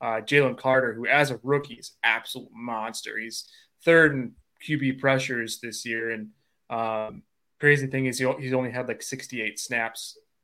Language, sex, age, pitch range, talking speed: English, male, 20-39, 115-135 Hz, 170 wpm